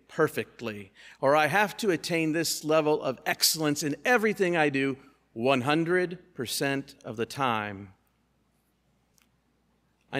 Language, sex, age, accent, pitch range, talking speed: English, male, 50-69, American, 125-155 Hz, 110 wpm